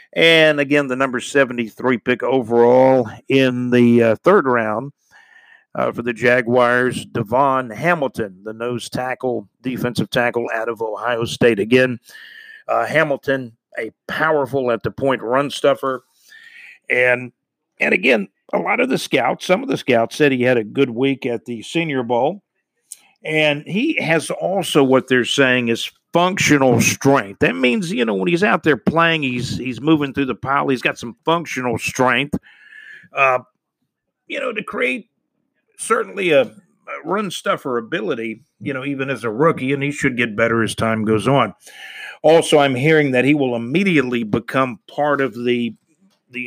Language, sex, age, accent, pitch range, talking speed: English, male, 50-69, American, 120-160 Hz, 160 wpm